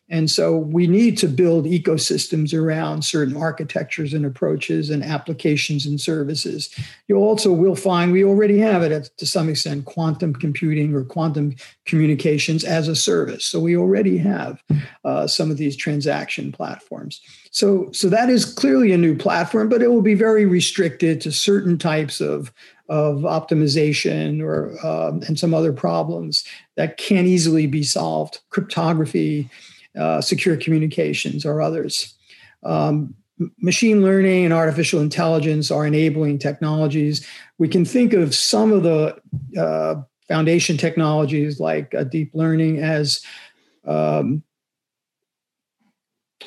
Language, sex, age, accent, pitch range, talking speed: Polish, male, 50-69, American, 145-180 Hz, 140 wpm